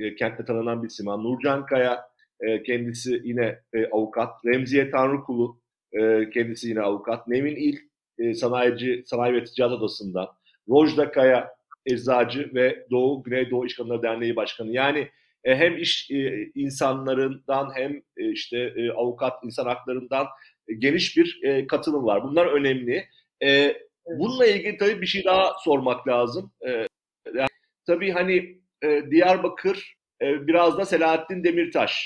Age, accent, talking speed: 40-59, native, 140 wpm